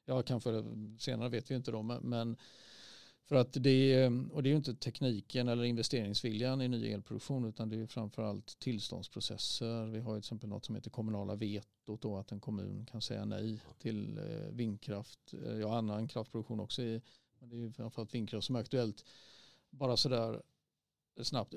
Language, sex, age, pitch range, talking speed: Swedish, male, 40-59, 110-130 Hz, 175 wpm